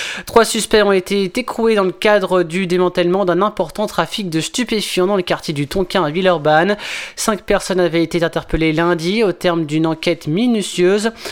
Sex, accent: male, French